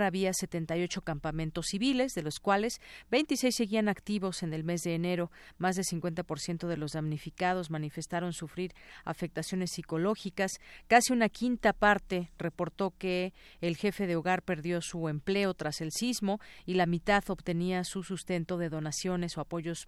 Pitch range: 165-200 Hz